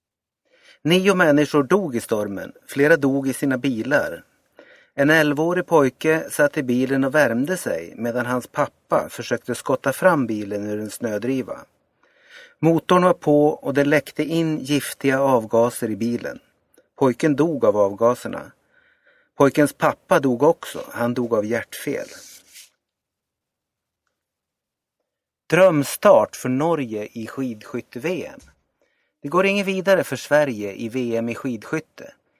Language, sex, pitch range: Swedish, male, 125-160 Hz